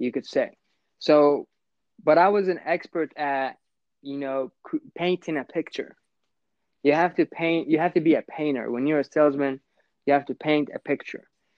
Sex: male